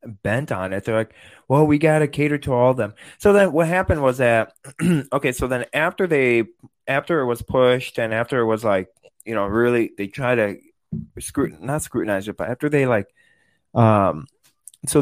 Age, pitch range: 20-39, 110-135 Hz